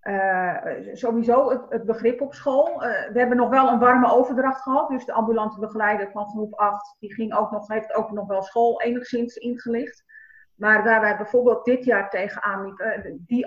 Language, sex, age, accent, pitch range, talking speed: Dutch, female, 40-59, Dutch, 200-250 Hz, 190 wpm